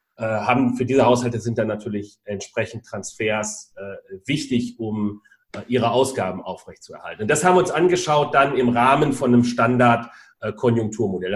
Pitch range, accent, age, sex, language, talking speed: 115-140 Hz, German, 40-59, male, German, 160 wpm